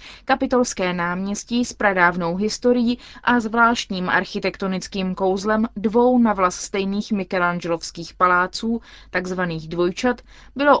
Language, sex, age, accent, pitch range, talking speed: Czech, female, 20-39, native, 190-235 Hz, 100 wpm